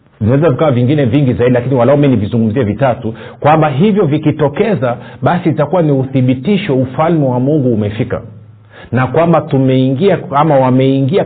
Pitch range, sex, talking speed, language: 115-150 Hz, male, 140 wpm, Swahili